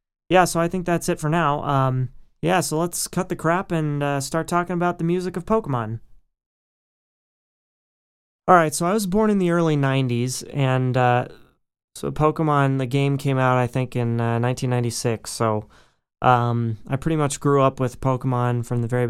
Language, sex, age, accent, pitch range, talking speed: English, male, 20-39, American, 120-145 Hz, 185 wpm